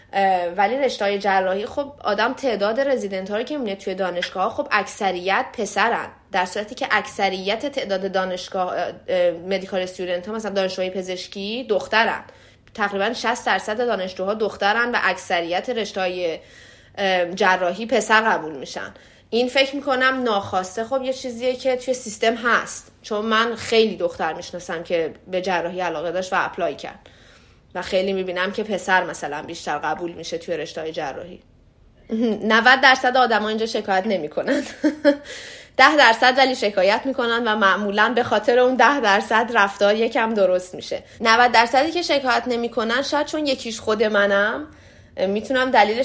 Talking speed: 140 wpm